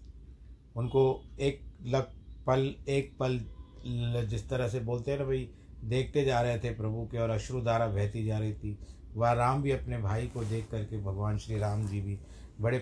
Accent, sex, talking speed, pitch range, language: native, male, 185 wpm, 105-135 Hz, Hindi